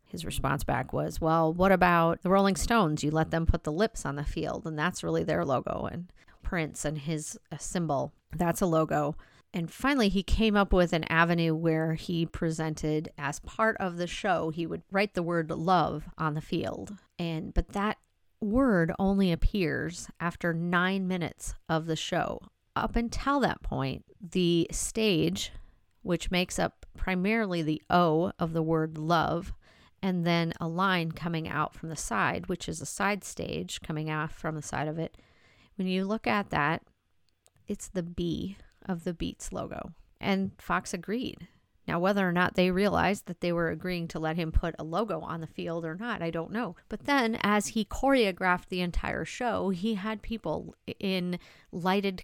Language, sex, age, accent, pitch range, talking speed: English, female, 40-59, American, 160-195 Hz, 185 wpm